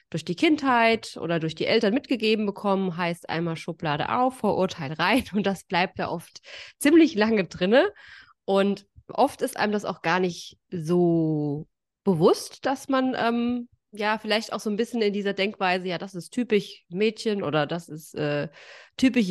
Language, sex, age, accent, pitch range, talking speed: German, female, 20-39, German, 170-215 Hz, 170 wpm